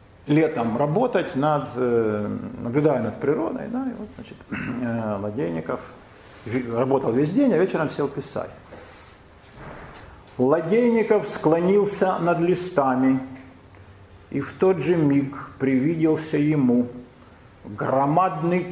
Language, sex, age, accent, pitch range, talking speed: Russian, male, 50-69, native, 105-145 Hz, 95 wpm